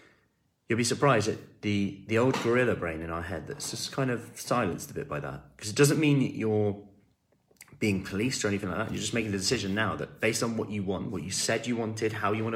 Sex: male